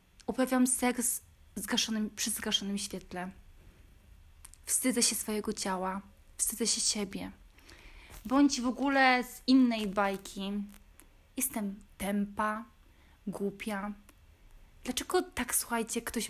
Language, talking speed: Polish, 95 wpm